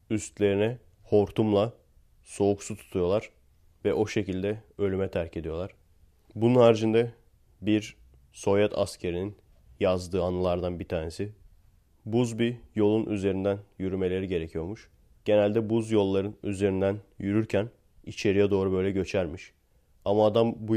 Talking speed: 110 wpm